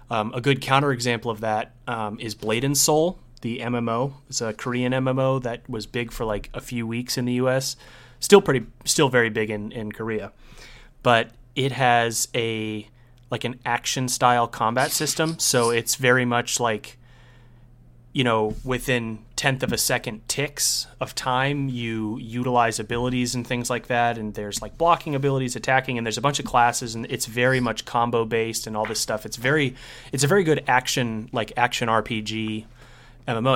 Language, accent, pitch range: English, American, 115-130 Hz